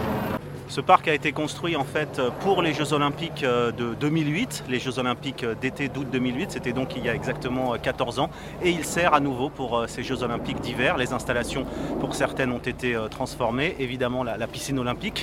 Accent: French